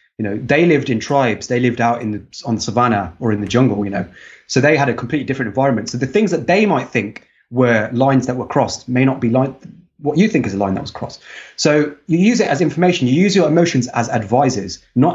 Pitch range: 115-150 Hz